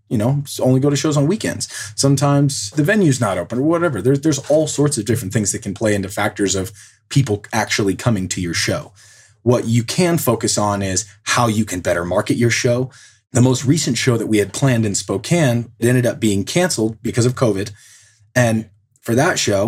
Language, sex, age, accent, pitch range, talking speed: English, male, 30-49, American, 105-130 Hz, 210 wpm